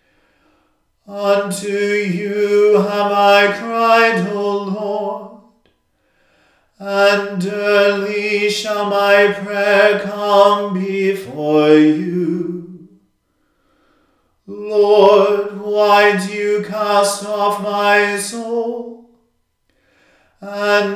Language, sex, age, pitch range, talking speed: English, male, 40-59, 200-205 Hz, 70 wpm